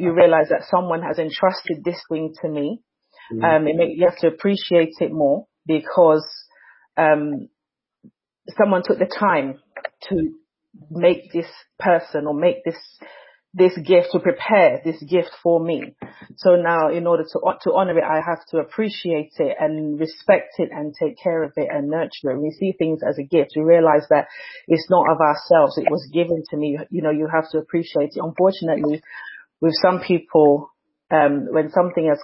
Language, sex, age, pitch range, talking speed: English, female, 30-49, 155-175 Hz, 180 wpm